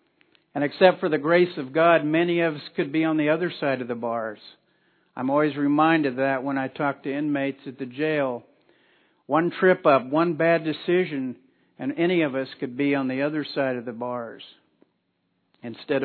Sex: male